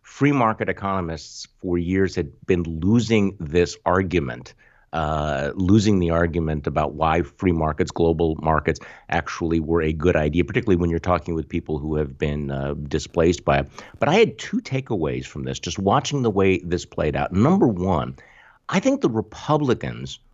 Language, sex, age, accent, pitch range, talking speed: English, male, 50-69, American, 85-120 Hz, 170 wpm